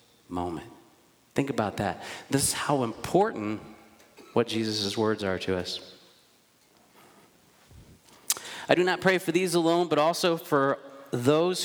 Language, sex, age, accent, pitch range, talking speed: English, male, 40-59, American, 105-150 Hz, 130 wpm